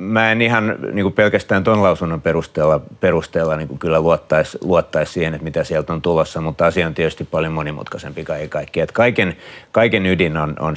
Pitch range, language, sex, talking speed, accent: 75-85 Hz, Finnish, male, 175 wpm, native